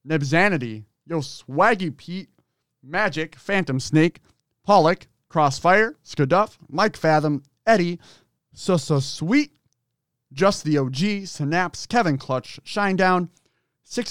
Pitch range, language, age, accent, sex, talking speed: 135-195 Hz, English, 30-49, American, male, 105 wpm